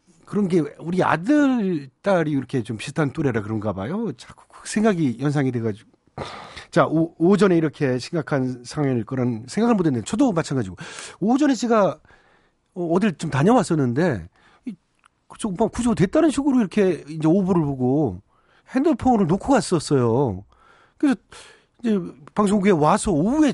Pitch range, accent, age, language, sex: 120-190 Hz, native, 40-59, Korean, male